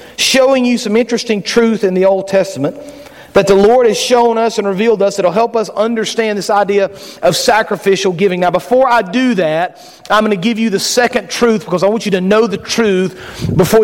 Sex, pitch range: male, 180-230 Hz